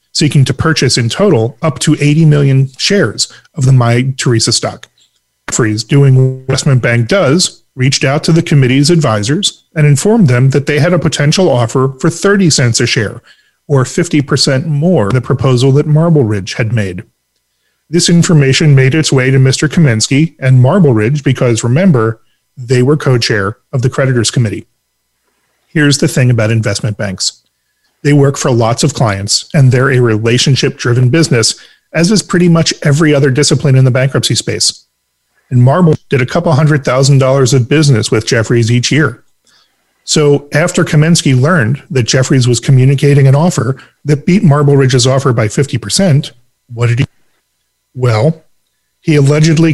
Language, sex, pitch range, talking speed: English, male, 125-155 Hz, 165 wpm